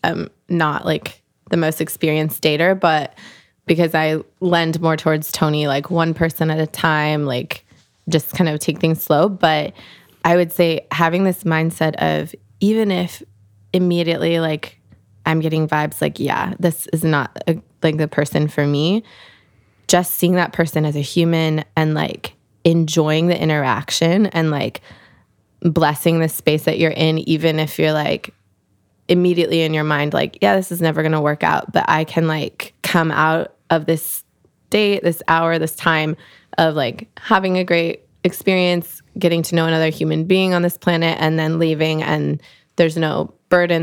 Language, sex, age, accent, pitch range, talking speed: English, female, 20-39, American, 155-170 Hz, 170 wpm